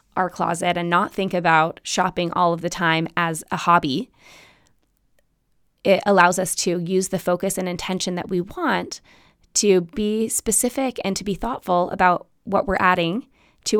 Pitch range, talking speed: 185-245 Hz, 165 wpm